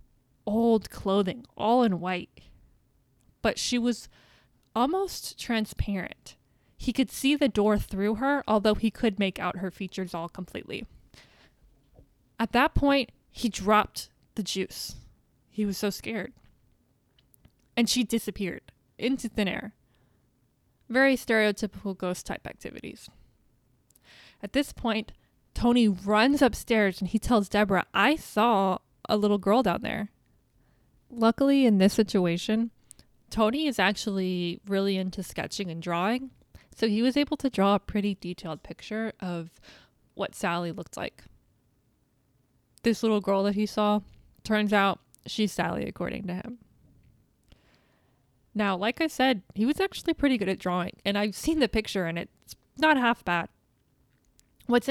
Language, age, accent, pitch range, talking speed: English, 20-39, American, 185-235 Hz, 140 wpm